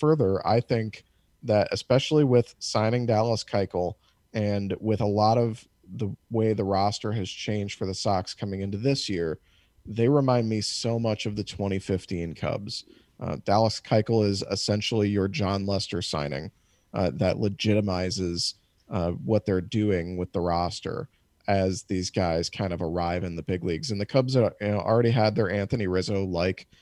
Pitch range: 95-110 Hz